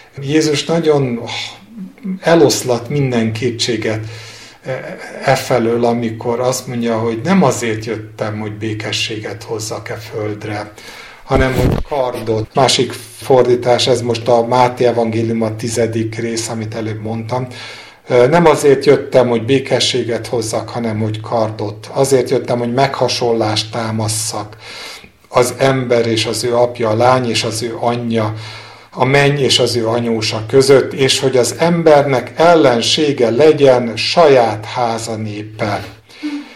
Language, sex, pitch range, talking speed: Hungarian, male, 110-135 Hz, 125 wpm